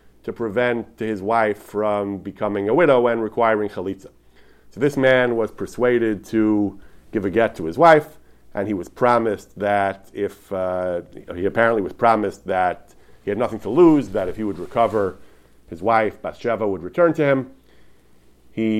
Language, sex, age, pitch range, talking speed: English, male, 40-59, 100-125 Hz, 170 wpm